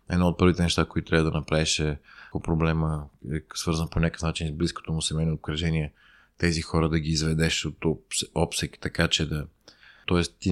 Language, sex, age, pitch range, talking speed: Bulgarian, male, 20-39, 75-90 Hz, 190 wpm